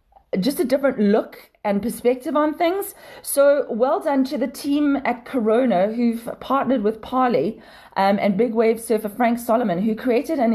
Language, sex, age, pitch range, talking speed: English, female, 30-49, 210-265 Hz, 165 wpm